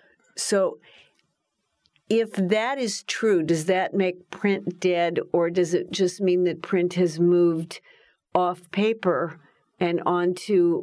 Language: English